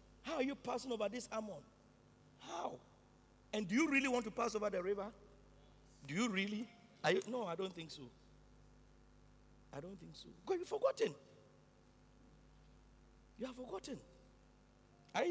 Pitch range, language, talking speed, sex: 150-245 Hz, English, 155 wpm, male